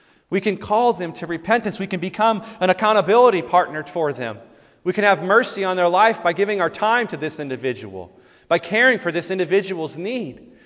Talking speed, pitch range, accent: 190 wpm, 160-210 Hz, American